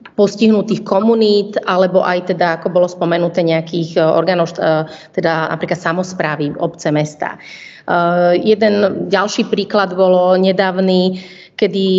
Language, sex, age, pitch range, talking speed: Slovak, female, 30-49, 175-195 Hz, 110 wpm